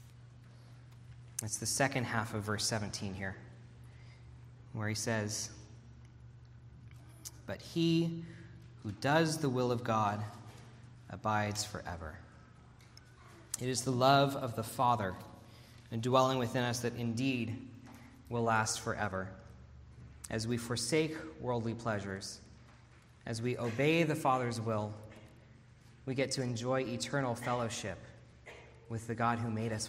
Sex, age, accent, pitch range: male, 20-39, American, 115-140 Hz